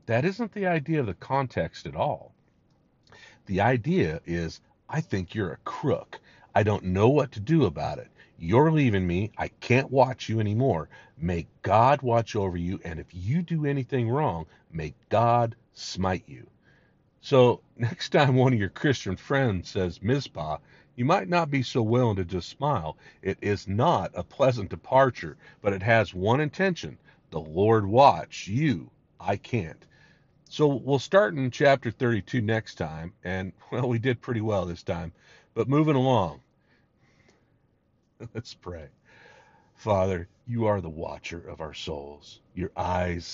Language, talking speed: English, 160 wpm